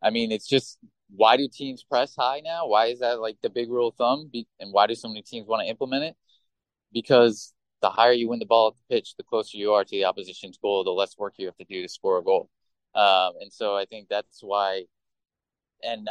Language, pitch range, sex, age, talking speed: English, 105-125 Hz, male, 20-39, 245 wpm